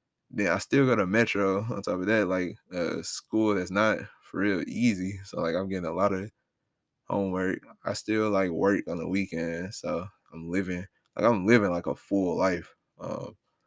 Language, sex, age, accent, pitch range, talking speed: English, male, 20-39, American, 95-115 Hz, 200 wpm